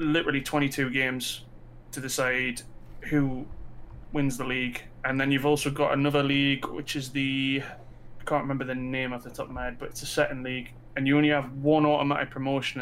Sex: male